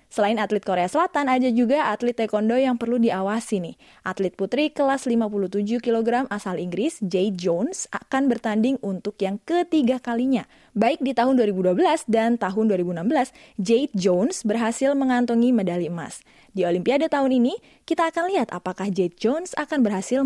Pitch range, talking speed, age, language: 195-260 Hz, 155 wpm, 20-39, Indonesian